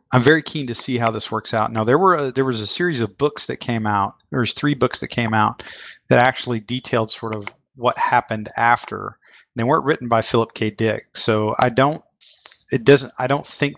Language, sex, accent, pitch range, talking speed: English, male, American, 110-125 Hz, 225 wpm